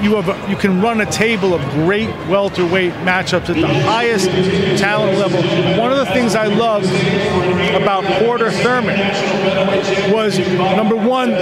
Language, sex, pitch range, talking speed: English, male, 190-225 Hz, 150 wpm